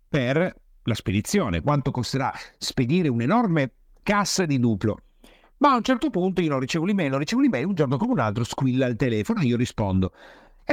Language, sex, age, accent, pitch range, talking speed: Italian, male, 50-69, native, 120-180 Hz, 185 wpm